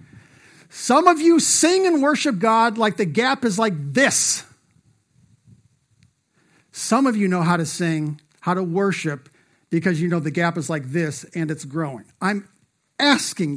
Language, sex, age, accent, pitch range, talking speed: English, male, 50-69, American, 150-200 Hz, 160 wpm